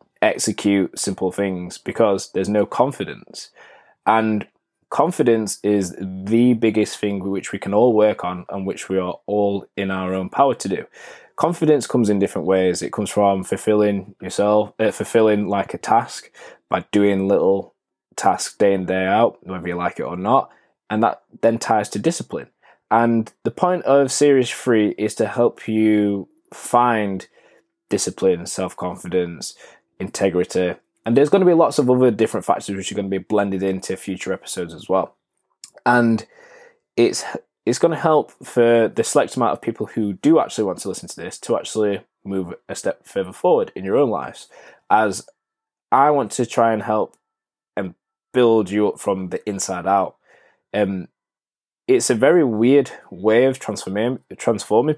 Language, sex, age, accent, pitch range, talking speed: English, male, 20-39, British, 95-120 Hz, 170 wpm